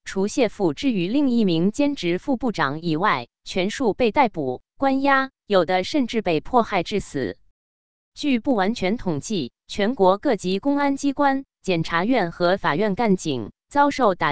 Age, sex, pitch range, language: 20-39, female, 175-265 Hz, Chinese